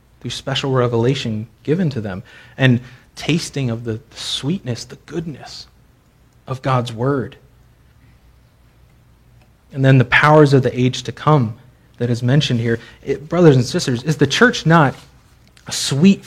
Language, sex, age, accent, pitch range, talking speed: English, male, 30-49, American, 120-155 Hz, 135 wpm